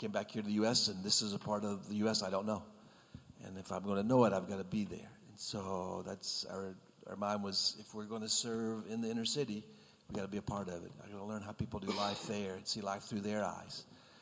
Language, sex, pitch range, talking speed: English, male, 105-115 Hz, 285 wpm